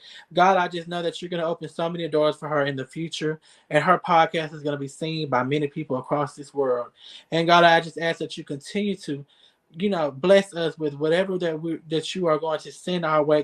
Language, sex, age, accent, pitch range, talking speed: English, male, 20-39, American, 140-165 Hz, 250 wpm